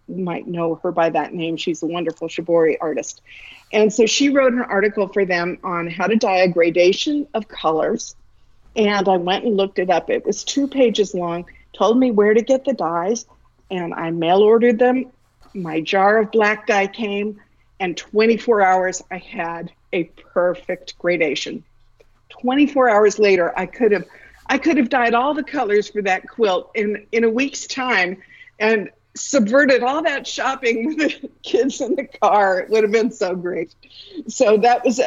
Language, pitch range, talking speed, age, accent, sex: English, 180-240 Hz, 185 wpm, 50-69, American, female